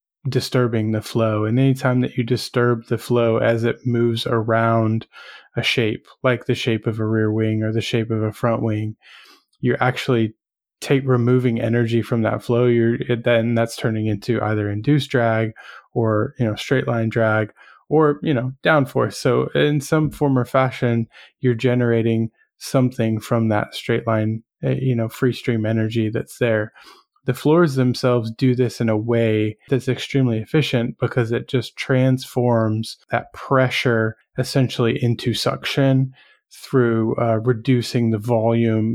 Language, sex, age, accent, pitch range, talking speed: English, male, 20-39, American, 110-125 Hz, 155 wpm